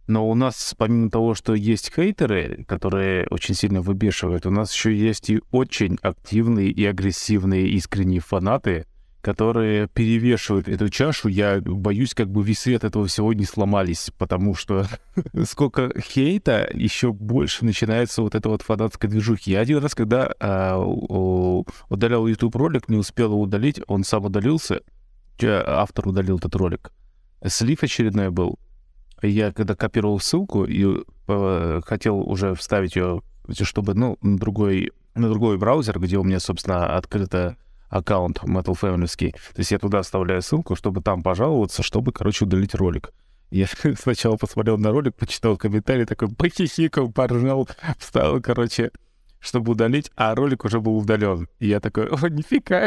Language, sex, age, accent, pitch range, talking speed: Russian, male, 20-39, native, 95-120 Hz, 150 wpm